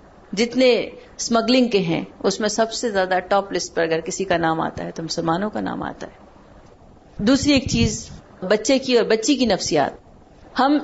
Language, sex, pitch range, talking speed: Urdu, female, 200-275 Hz, 190 wpm